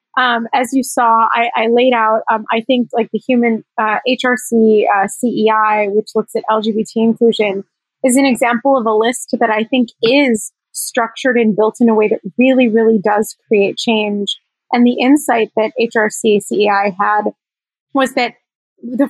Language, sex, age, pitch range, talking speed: English, female, 20-39, 220-260 Hz, 175 wpm